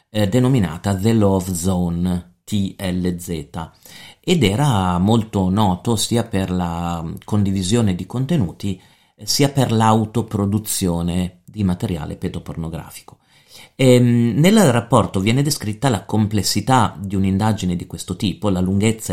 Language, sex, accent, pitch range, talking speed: Italian, male, native, 90-110 Hz, 105 wpm